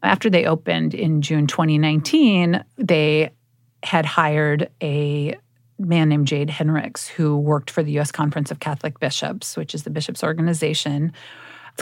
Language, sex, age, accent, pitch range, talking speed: English, female, 40-59, American, 145-170 Hz, 145 wpm